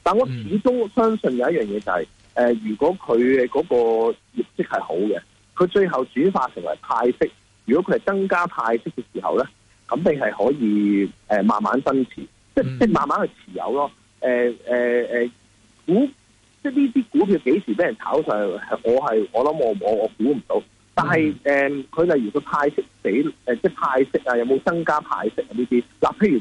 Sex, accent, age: male, native, 30-49